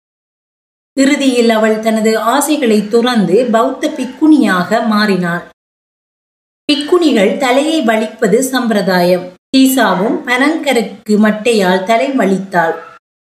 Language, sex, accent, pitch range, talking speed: Tamil, female, native, 205-260 Hz, 75 wpm